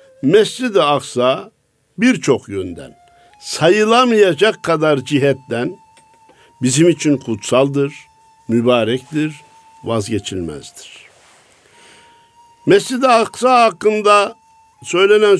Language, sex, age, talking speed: Turkish, male, 60-79, 60 wpm